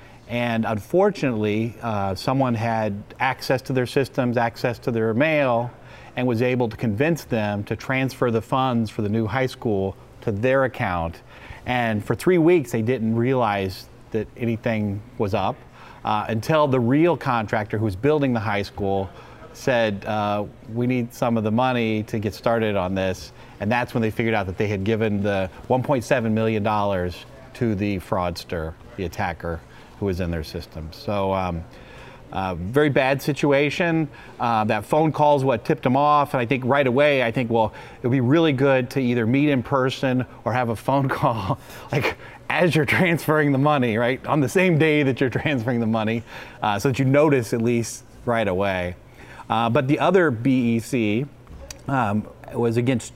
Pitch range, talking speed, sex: 105-135 Hz, 180 wpm, male